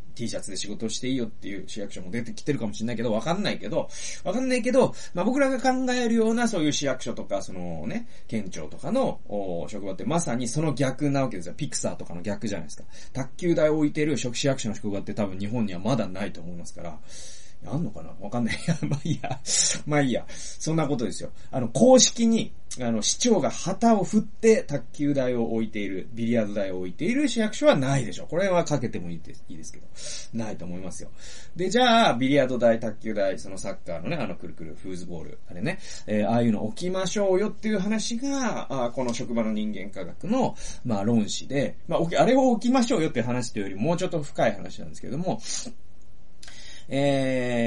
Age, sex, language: 30-49, male, Japanese